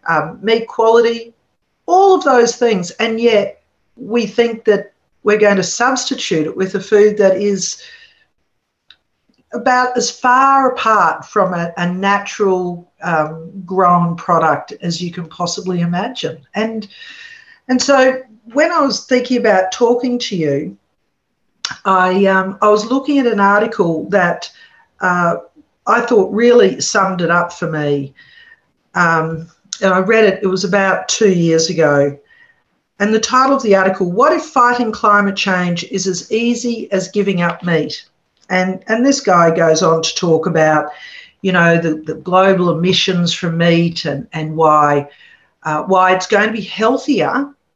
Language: English